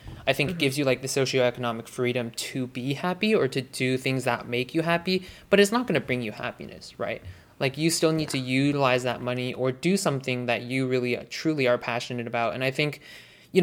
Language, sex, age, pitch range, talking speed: English, male, 20-39, 125-145 Hz, 230 wpm